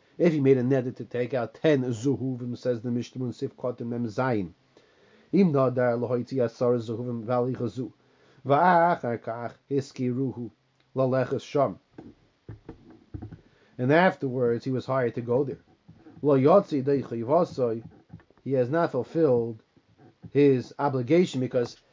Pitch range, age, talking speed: 120-150 Hz, 30-49, 90 wpm